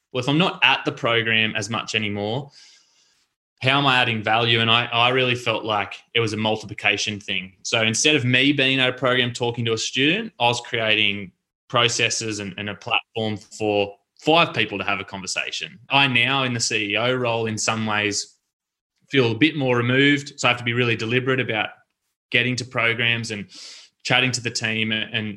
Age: 20-39